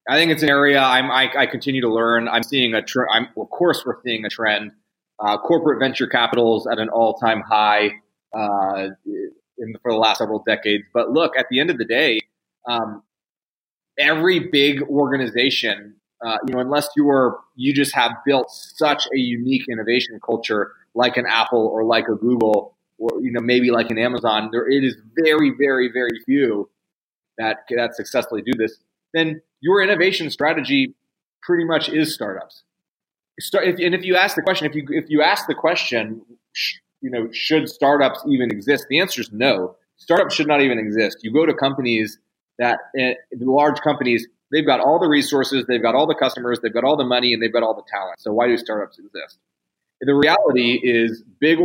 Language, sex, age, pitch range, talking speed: English, male, 30-49, 115-145 Hz, 195 wpm